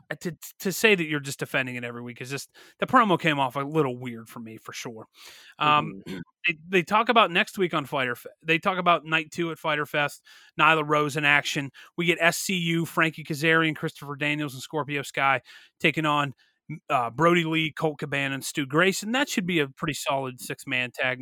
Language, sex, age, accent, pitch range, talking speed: English, male, 30-49, American, 140-165 Hz, 210 wpm